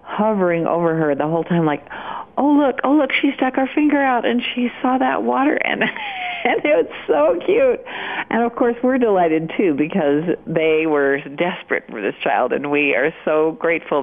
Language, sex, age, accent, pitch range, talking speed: English, female, 50-69, American, 160-240 Hz, 190 wpm